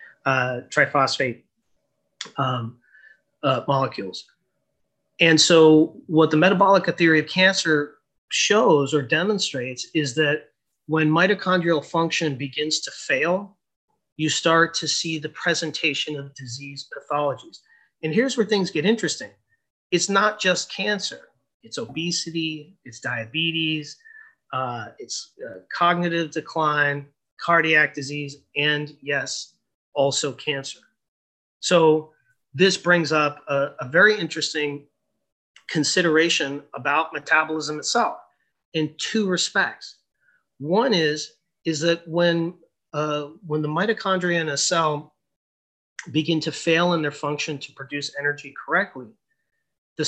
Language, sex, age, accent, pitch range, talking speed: English, male, 30-49, American, 145-175 Hz, 115 wpm